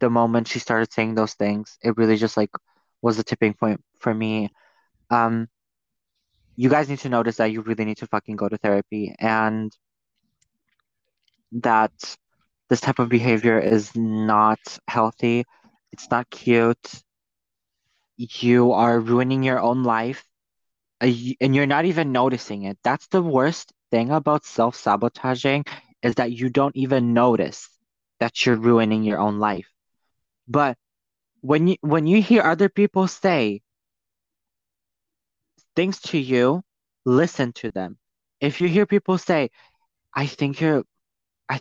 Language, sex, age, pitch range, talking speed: English, male, 20-39, 115-140 Hz, 135 wpm